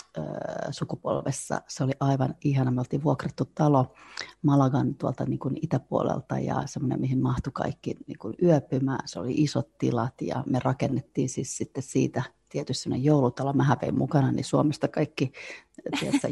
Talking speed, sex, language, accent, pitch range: 140 wpm, female, Finnish, native, 130-150 Hz